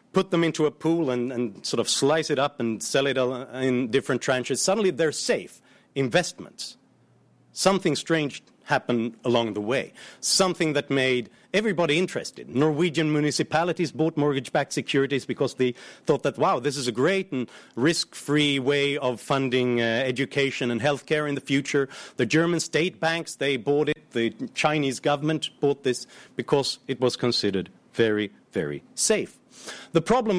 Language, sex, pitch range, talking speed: English, male, 125-155 Hz, 160 wpm